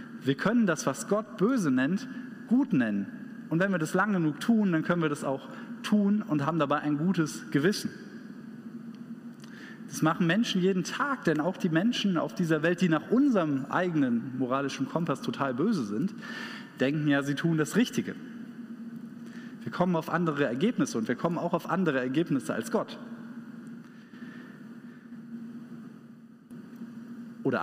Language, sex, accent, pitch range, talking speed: German, male, German, 165-235 Hz, 150 wpm